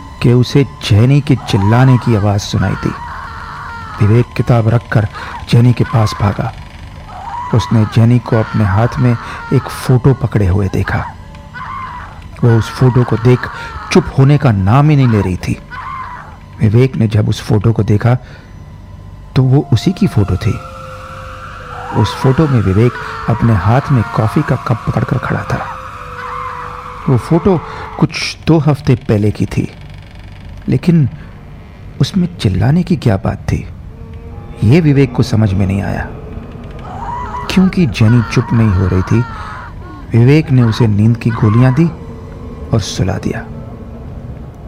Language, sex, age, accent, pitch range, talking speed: Hindi, male, 50-69, native, 100-125 Hz, 140 wpm